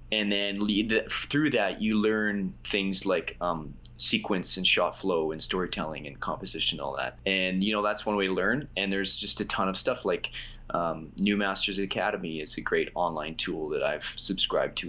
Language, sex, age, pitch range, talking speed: English, male, 20-39, 85-105 Hz, 205 wpm